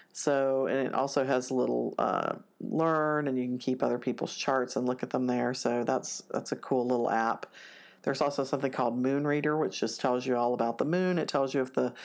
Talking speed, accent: 235 wpm, American